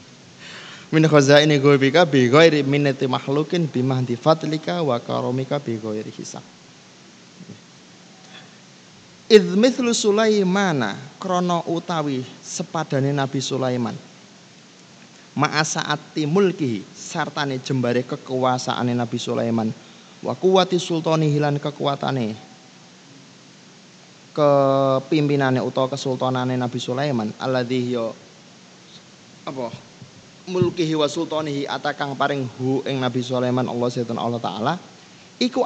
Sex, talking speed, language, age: male, 95 wpm, Indonesian, 20-39